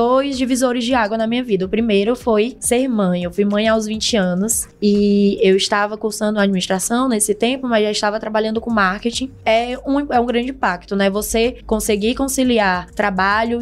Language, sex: English, female